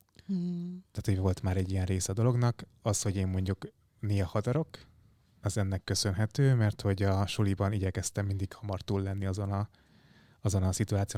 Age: 20-39